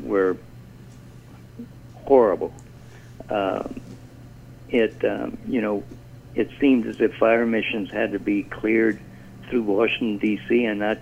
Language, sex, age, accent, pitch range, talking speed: English, male, 60-79, American, 105-125 Hz, 125 wpm